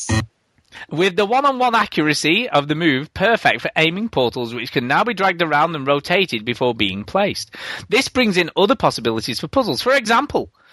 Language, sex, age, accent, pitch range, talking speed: English, male, 30-49, British, 130-195 Hz, 175 wpm